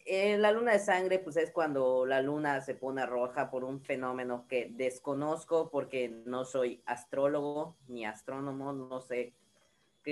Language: Spanish